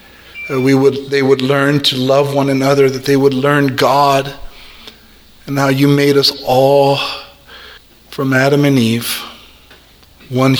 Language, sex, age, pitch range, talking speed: English, male, 40-59, 110-135 Hz, 140 wpm